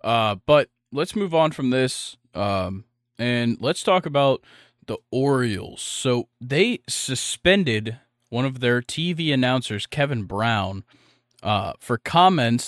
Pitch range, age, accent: 120-150 Hz, 20-39, American